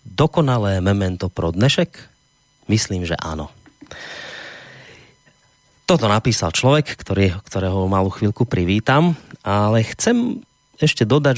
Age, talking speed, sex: 30-49, 100 wpm, male